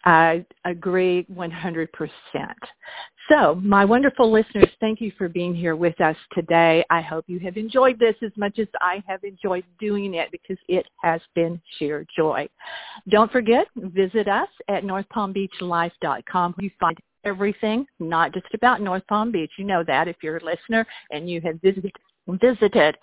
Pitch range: 175-230 Hz